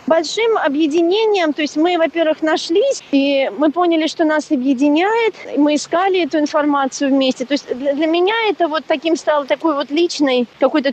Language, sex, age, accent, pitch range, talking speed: Russian, female, 40-59, native, 255-320 Hz, 170 wpm